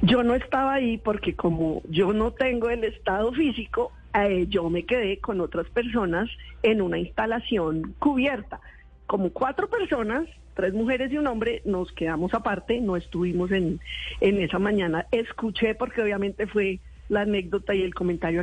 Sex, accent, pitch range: female, Colombian, 185-255 Hz